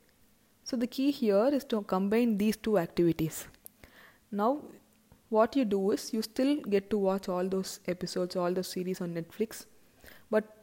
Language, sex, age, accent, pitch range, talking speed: English, female, 20-39, Indian, 180-220 Hz, 165 wpm